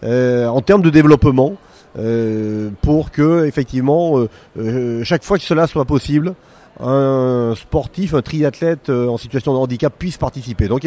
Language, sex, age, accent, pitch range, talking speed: French, male, 30-49, French, 125-165 Hz, 165 wpm